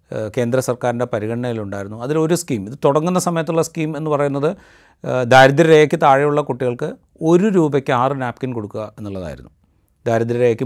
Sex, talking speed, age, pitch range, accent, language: male, 120 wpm, 30-49, 110-155 Hz, native, Malayalam